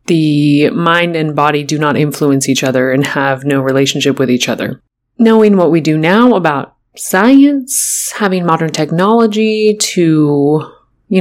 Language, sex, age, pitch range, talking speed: English, female, 20-39, 140-185 Hz, 150 wpm